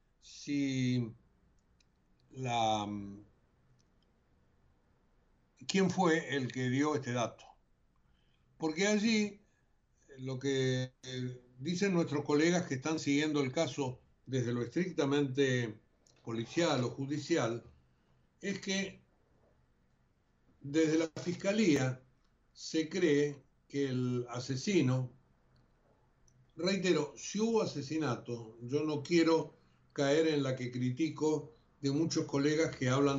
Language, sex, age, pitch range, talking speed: Spanish, male, 60-79, 125-160 Hz, 100 wpm